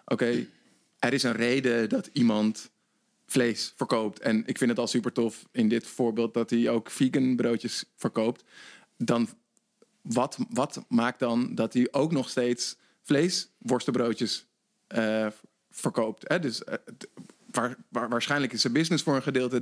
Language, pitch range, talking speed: Dutch, 115-135 Hz, 155 wpm